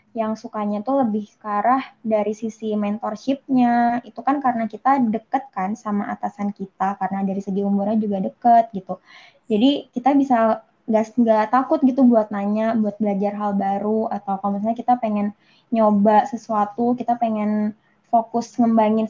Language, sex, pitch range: Indonesian, female, 210-240 Hz